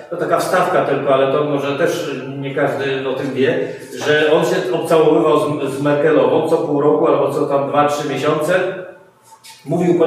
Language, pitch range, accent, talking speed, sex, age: Polish, 140-165 Hz, native, 185 wpm, male, 40-59